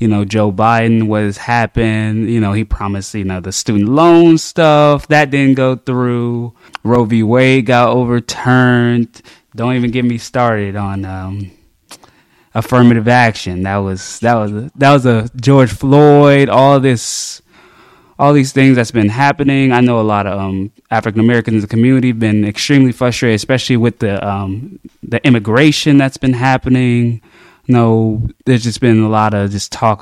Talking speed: 175 wpm